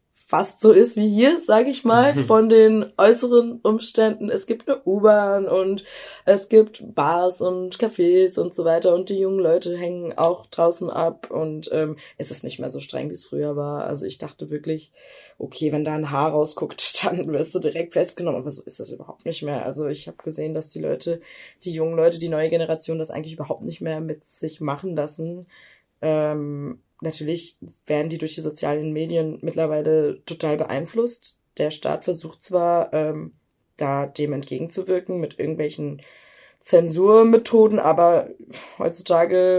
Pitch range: 155-200 Hz